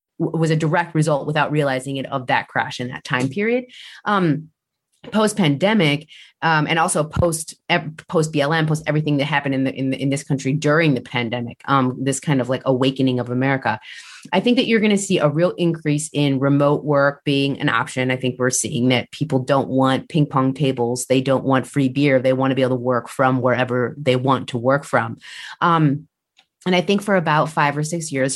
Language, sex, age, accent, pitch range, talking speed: English, female, 30-49, American, 130-160 Hz, 215 wpm